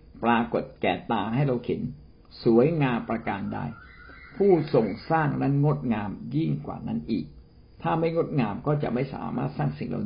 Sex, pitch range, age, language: male, 105-165 Hz, 60-79, Thai